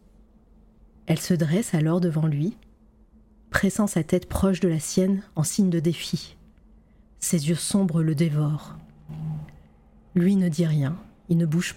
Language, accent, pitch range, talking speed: French, French, 170-195 Hz, 150 wpm